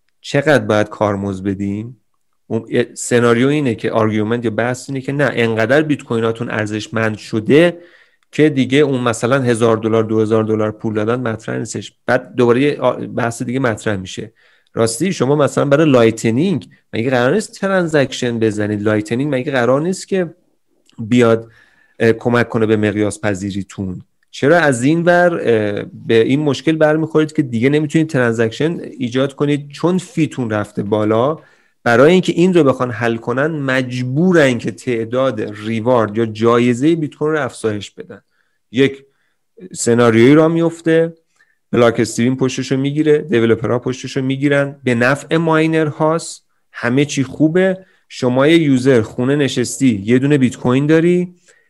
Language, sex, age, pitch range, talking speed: Persian, male, 30-49, 115-150 Hz, 140 wpm